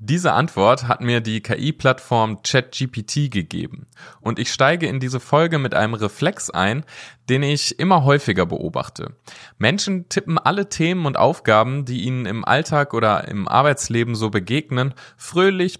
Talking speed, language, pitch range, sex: 150 wpm, German, 110-145 Hz, male